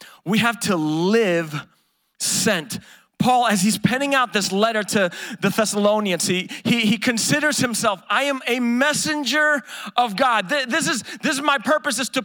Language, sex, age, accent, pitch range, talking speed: English, male, 30-49, American, 205-265 Hz, 165 wpm